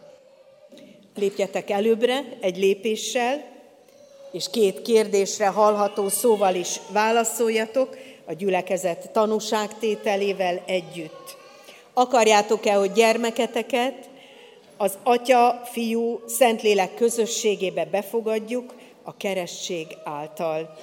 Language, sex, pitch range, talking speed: Hungarian, female, 180-235 Hz, 70 wpm